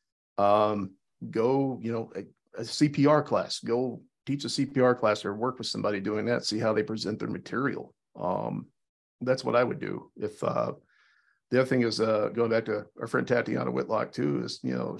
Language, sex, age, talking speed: English, male, 50-69, 195 wpm